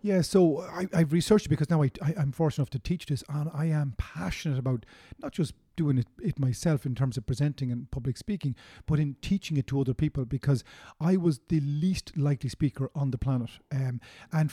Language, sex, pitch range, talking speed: English, male, 135-160 Hz, 215 wpm